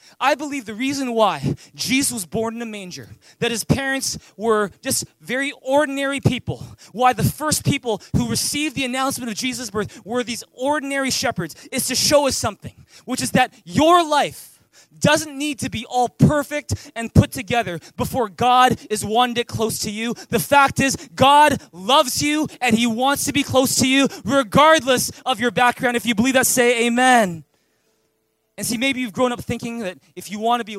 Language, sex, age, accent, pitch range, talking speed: English, male, 20-39, American, 180-250 Hz, 190 wpm